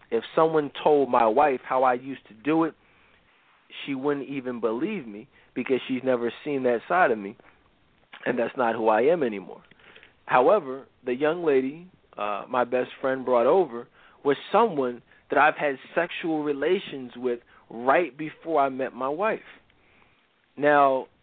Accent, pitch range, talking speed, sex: American, 125-160 Hz, 160 wpm, male